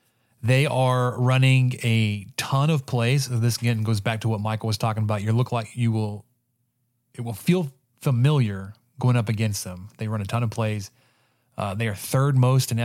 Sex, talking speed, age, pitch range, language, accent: male, 195 wpm, 30-49, 110-130 Hz, English, American